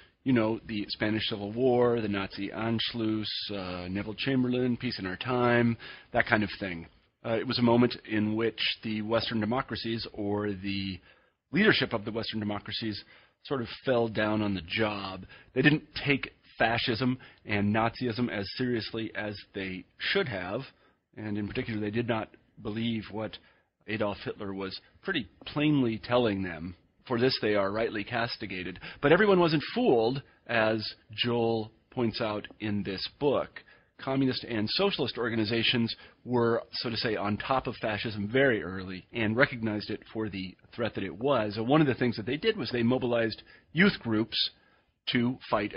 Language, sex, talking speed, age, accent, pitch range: English, male, 165 wpm, 40-59, American, 105-120 Hz